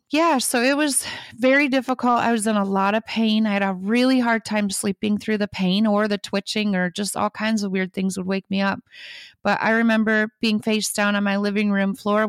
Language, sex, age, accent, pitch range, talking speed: English, female, 30-49, American, 195-220 Hz, 235 wpm